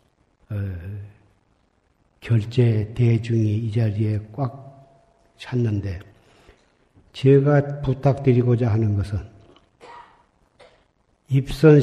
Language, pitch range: Korean, 115-145 Hz